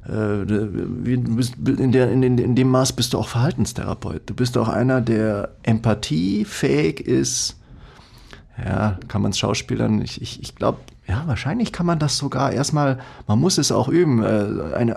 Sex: male